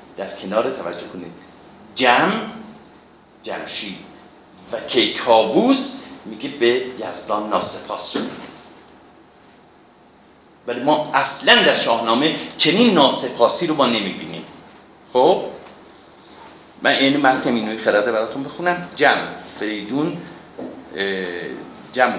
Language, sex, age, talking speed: Persian, male, 50-69, 90 wpm